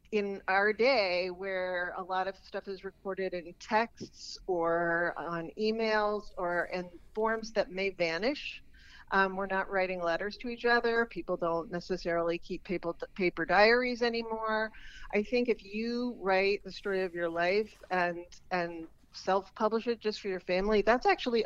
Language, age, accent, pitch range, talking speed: English, 50-69, American, 180-220 Hz, 160 wpm